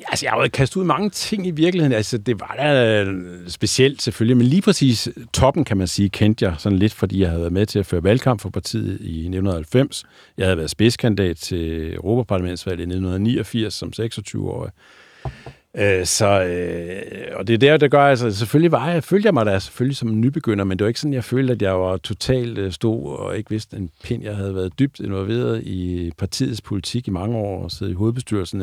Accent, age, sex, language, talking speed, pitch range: native, 50-69, male, Danish, 215 wpm, 90-115 Hz